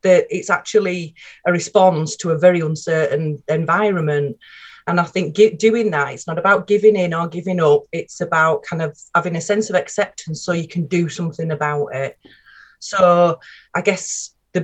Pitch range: 155-205 Hz